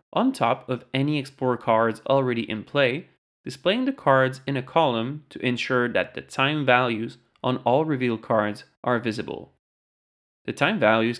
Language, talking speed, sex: English, 160 wpm, male